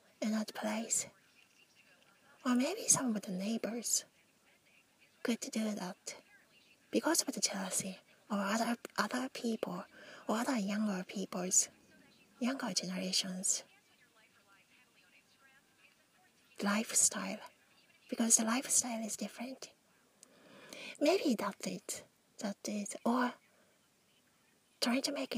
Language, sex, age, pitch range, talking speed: English, female, 30-49, 200-250 Hz, 100 wpm